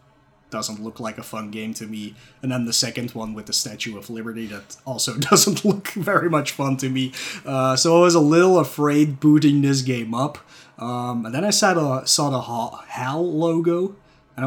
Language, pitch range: English, 110-145 Hz